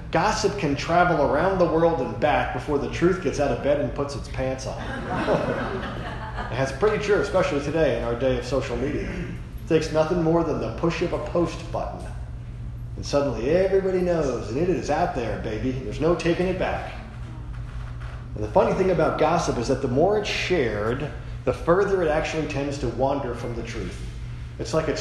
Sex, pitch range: male, 120-160 Hz